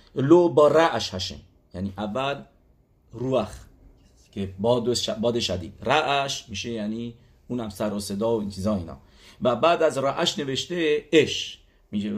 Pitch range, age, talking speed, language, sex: 105-135 Hz, 50-69, 150 wpm, English, male